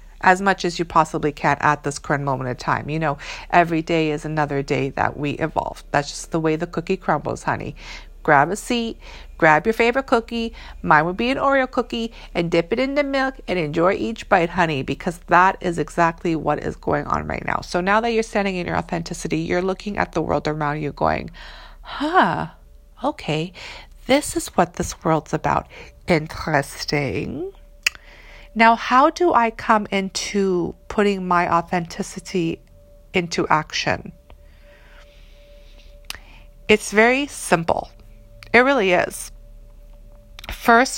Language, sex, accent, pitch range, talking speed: English, female, American, 145-215 Hz, 155 wpm